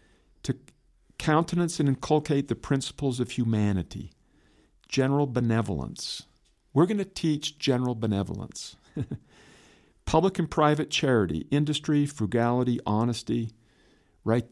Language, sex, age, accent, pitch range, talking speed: English, male, 50-69, American, 100-130 Hz, 100 wpm